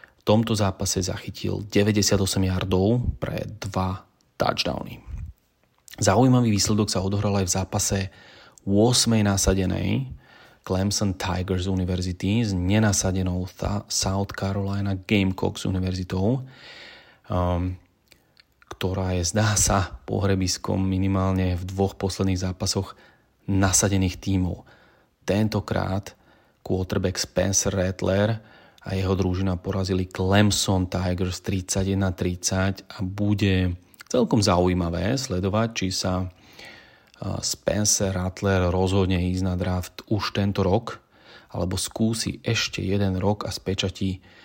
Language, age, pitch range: Slovak, 30-49, 95-100 Hz